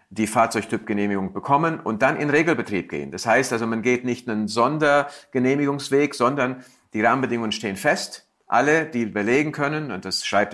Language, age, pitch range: German, 50-69, 95-120 Hz